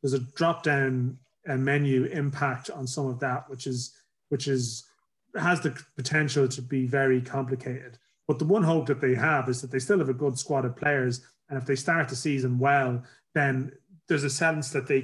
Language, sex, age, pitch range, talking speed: English, male, 30-49, 130-140 Hz, 205 wpm